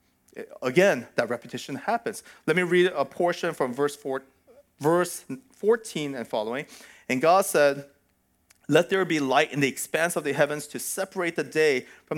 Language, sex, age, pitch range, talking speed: English, male, 40-59, 115-155 Hz, 165 wpm